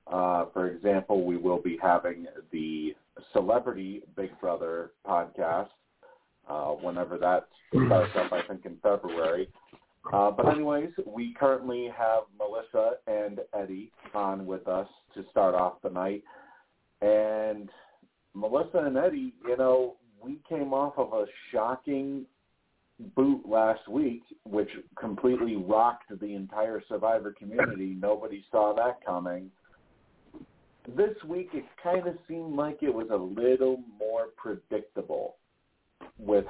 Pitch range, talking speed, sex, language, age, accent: 95-130 Hz, 130 wpm, male, English, 40-59, American